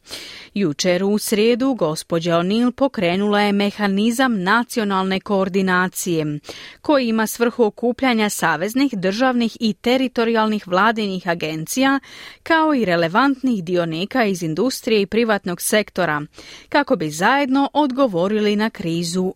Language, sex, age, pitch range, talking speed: Croatian, female, 30-49, 185-245 Hz, 110 wpm